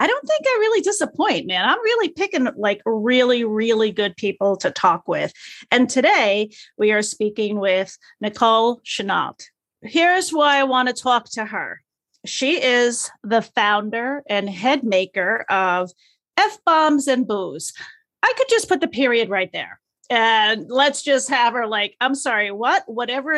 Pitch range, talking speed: 220-295 Hz, 160 wpm